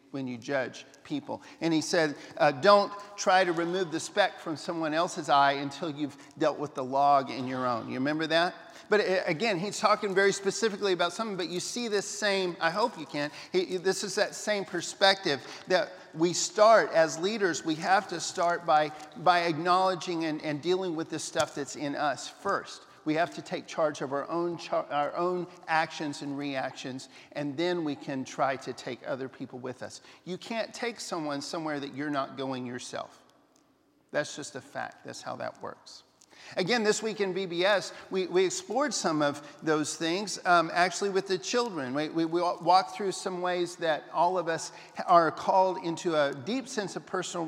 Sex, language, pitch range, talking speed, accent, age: male, English, 155-190 Hz, 195 wpm, American, 50-69